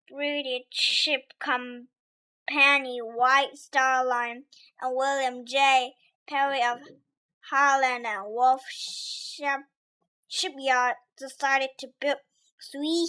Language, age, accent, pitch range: Chinese, 20-39, American, 250-305 Hz